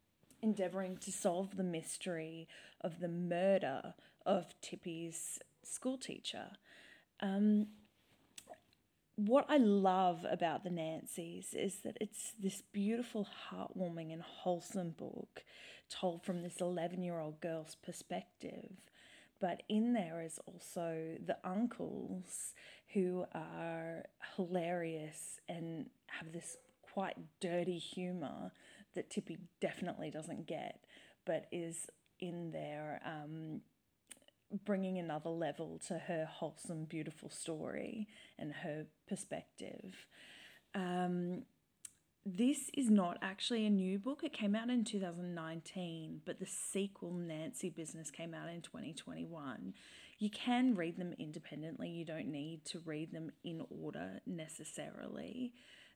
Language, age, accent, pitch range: English, 20-39, Australian, 165-200 Hz